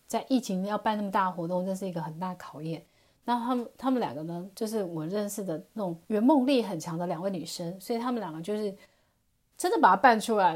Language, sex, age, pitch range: Chinese, female, 30-49, 185-220 Hz